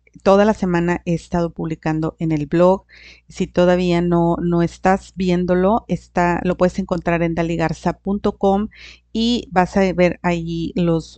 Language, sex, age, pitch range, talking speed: Spanish, female, 40-59, 170-195 Hz, 140 wpm